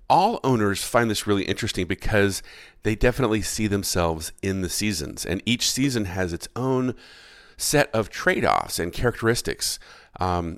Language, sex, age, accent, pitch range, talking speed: English, male, 50-69, American, 85-110 Hz, 145 wpm